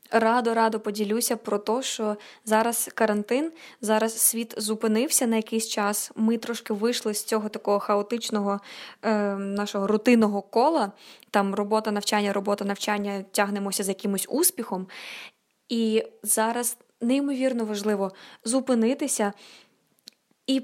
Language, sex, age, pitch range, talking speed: Ukrainian, female, 20-39, 210-240 Hz, 110 wpm